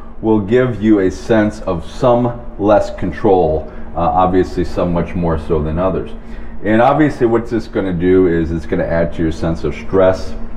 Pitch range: 80-105 Hz